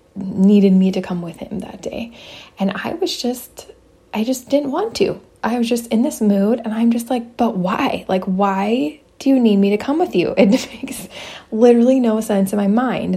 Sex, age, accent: female, 20-39, American